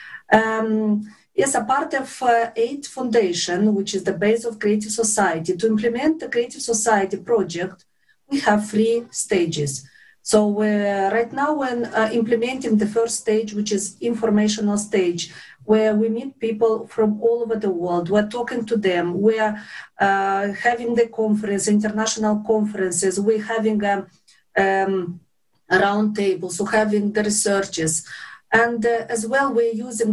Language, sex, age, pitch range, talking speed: English, female, 40-59, 195-230 Hz, 150 wpm